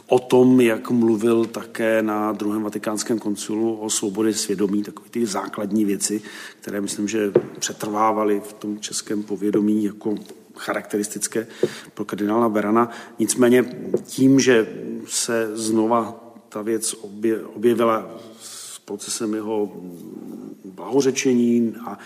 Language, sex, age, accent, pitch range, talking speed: Czech, male, 40-59, native, 110-130 Hz, 110 wpm